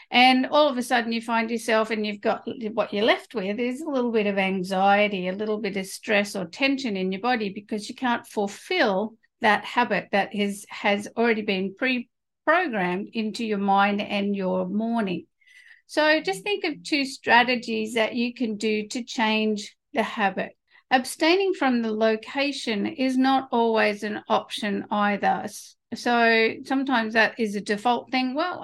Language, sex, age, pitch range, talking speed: English, female, 50-69, 205-260 Hz, 170 wpm